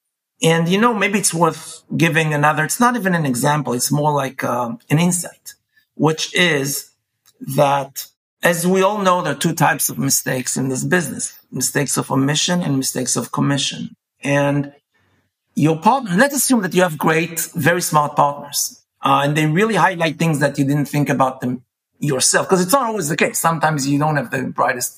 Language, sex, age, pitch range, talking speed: English, male, 50-69, 145-195 Hz, 190 wpm